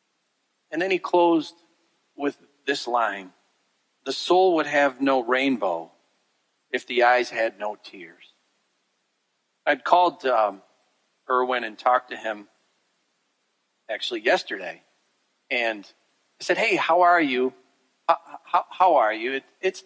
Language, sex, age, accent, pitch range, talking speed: English, male, 40-59, American, 125-170 Hz, 125 wpm